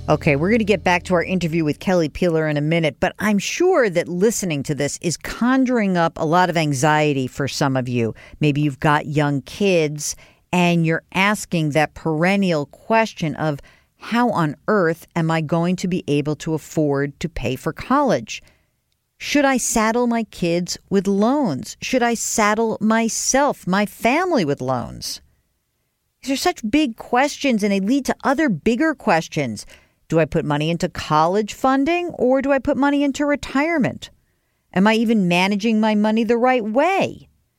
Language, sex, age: English, female, 50-69